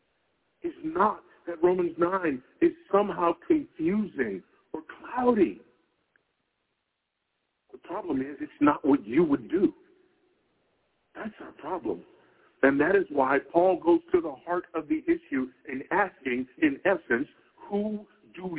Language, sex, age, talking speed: English, male, 50-69, 130 wpm